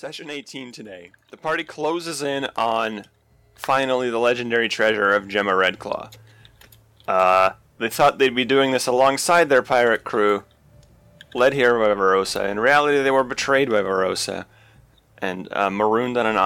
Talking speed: 155 wpm